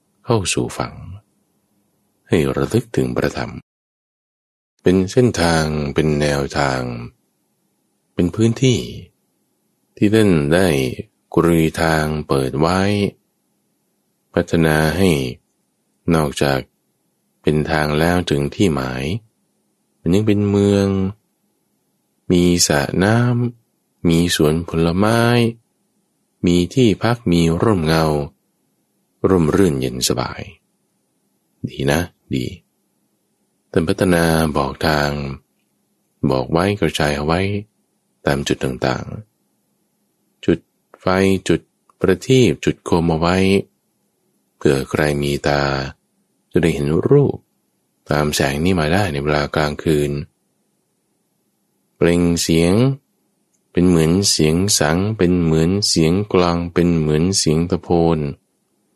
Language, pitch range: English, 75-95 Hz